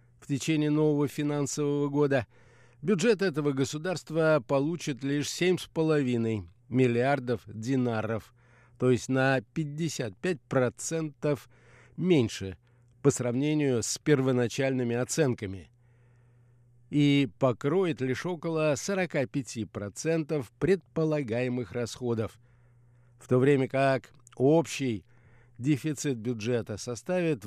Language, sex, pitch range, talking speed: Russian, male, 120-150 Hz, 85 wpm